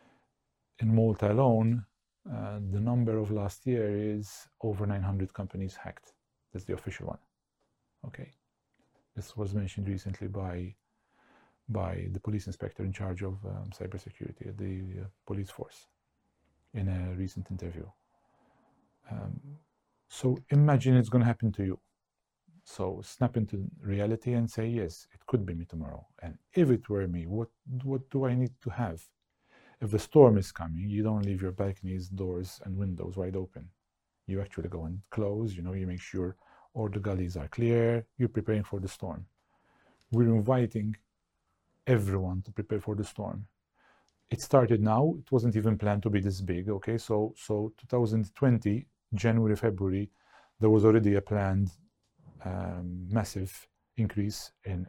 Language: English